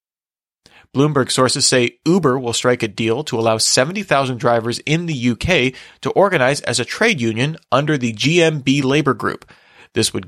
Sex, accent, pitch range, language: male, American, 115-145 Hz, English